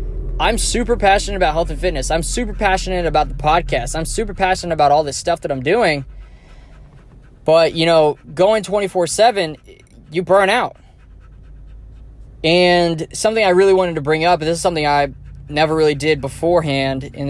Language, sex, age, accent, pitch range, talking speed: English, male, 10-29, American, 140-170 Hz, 170 wpm